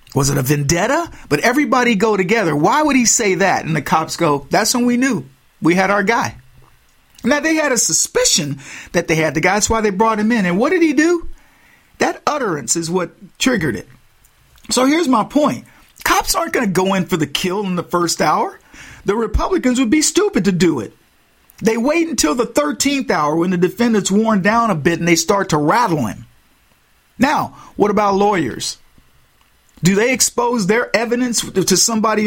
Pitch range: 170-235 Hz